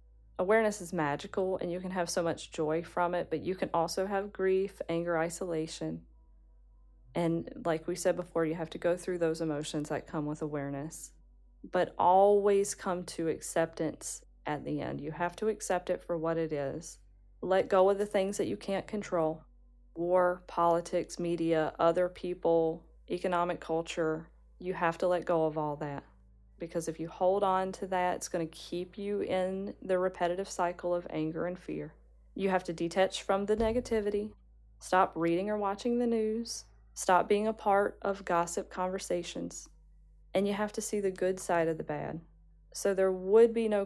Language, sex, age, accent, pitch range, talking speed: English, female, 40-59, American, 160-190 Hz, 180 wpm